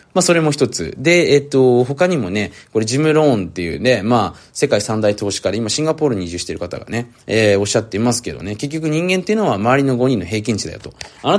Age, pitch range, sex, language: 20-39, 105-150 Hz, male, Japanese